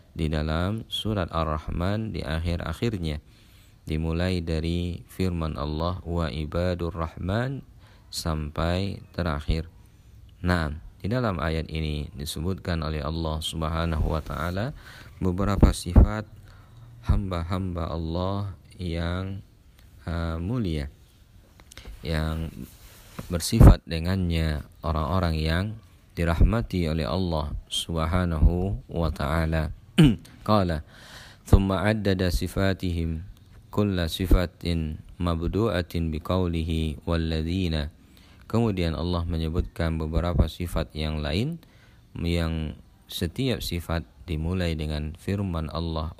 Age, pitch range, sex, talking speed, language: 40-59, 80-95 Hz, male, 90 wpm, Indonesian